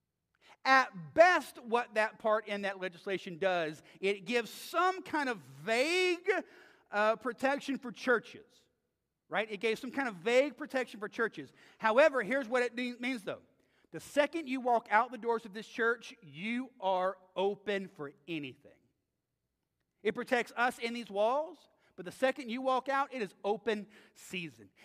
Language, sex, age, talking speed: English, male, 40-59, 160 wpm